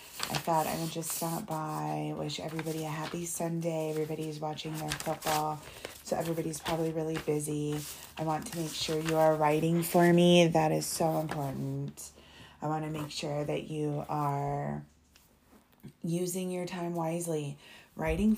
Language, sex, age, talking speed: English, female, 30-49, 155 wpm